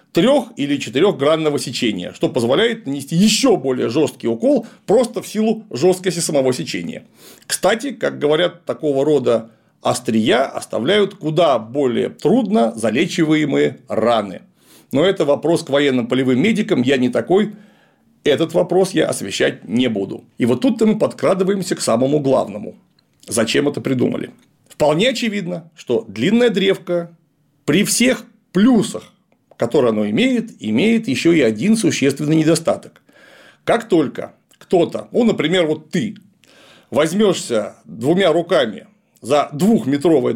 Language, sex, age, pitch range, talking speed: Russian, male, 40-59, 150-220 Hz, 130 wpm